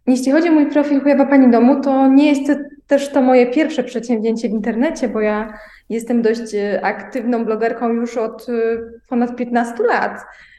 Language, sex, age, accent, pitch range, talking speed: Polish, female, 20-39, native, 220-260 Hz, 165 wpm